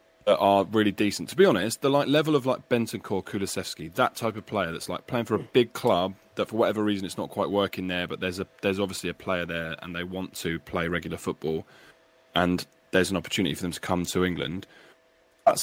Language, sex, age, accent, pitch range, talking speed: English, male, 20-39, British, 90-105 Hz, 230 wpm